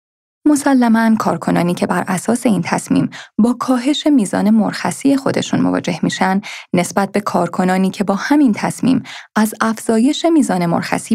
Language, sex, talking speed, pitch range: Persian, female, 135 wpm, 190-260 Hz